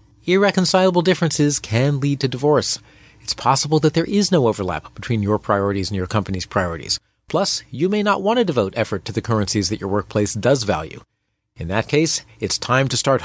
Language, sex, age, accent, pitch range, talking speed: English, male, 40-59, American, 110-155 Hz, 195 wpm